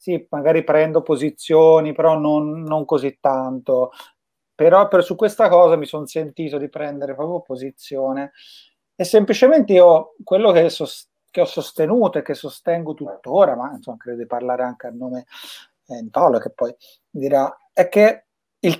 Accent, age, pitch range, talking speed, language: native, 30-49, 135-195 Hz, 155 wpm, Italian